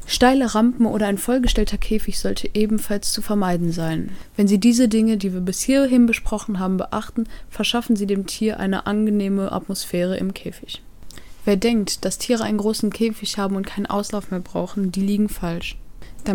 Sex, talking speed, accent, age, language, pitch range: female, 175 wpm, German, 20-39, German, 190-225 Hz